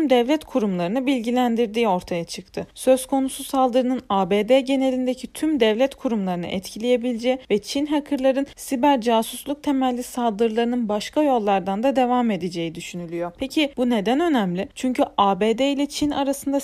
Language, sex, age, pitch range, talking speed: Turkish, female, 40-59, 215-275 Hz, 130 wpm